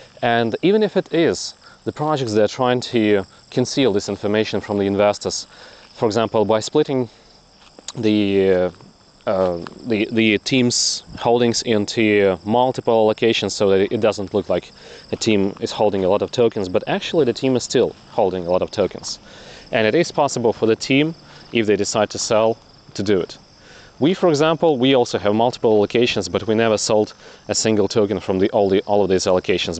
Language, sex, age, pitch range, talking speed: English, male, 30-49, 100-130 Hz, 190 wpm